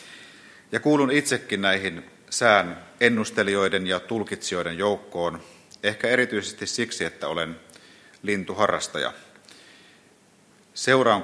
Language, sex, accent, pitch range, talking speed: Finnish, male, native, 85-105 Hz, 85 wpm